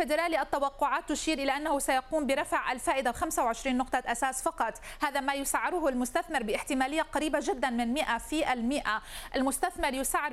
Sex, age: female, 30-49